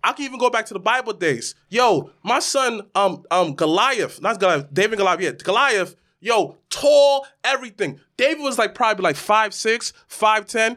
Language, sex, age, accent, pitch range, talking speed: English, male, 20-39, American, 180-240 Hz, 185 wpm